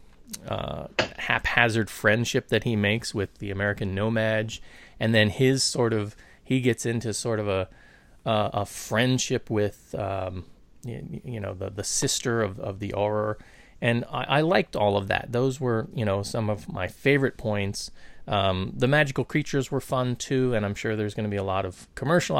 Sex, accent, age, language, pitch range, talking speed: male, American, 30-49, English, 100-125 Hz, 190 wpm